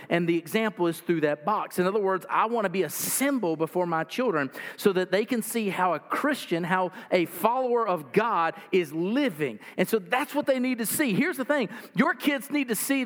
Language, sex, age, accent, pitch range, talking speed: English, male, 50-69, American, 155-215 Hz, 230 wpm